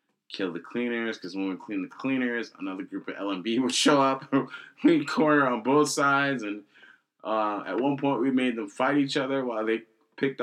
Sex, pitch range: male, 90-130 Hz